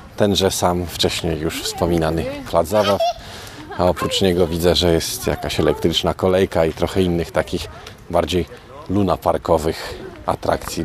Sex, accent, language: male, native, Polish